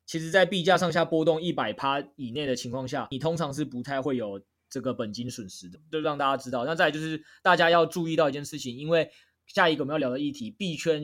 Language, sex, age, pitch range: Chinese, male, 20-39, 130-165 Hz